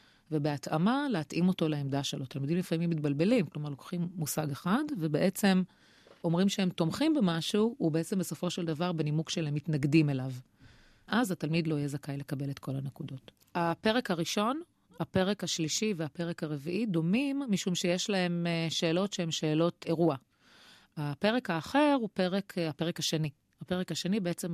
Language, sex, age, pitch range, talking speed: Hebrew, female, 30-49, 155-190 Hz, 140 wpm